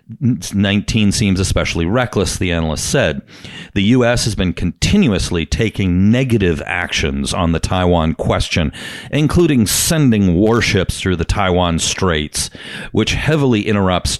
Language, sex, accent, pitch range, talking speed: English, male, American, 85-110 Hz, 125 wpm